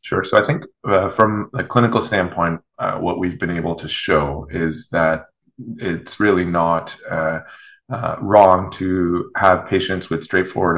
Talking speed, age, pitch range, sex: 160 wpm, 30-49, 75-90 Hz, male